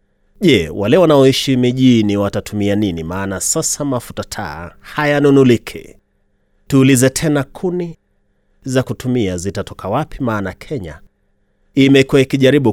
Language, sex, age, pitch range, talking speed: Swahili, male, 30-49, 100-135 Hz, 120 wpm